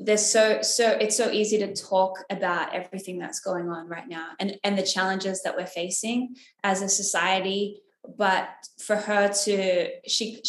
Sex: female